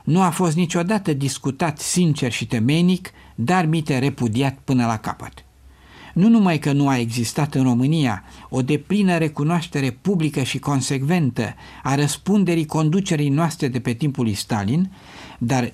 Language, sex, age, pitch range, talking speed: Romanian, male, 50-69, 125-175 Hz, 145 wpm